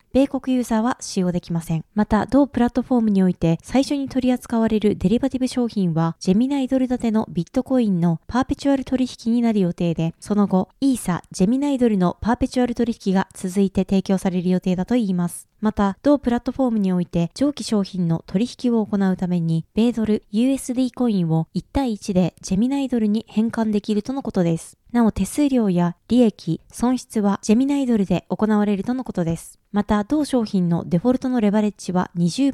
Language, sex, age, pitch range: Japanese, female, 20-39, 185-255 Hz